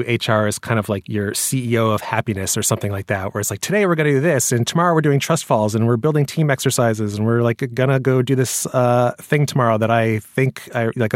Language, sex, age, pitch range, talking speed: English, male, 30-49, 110-135 Hz, 260 wpm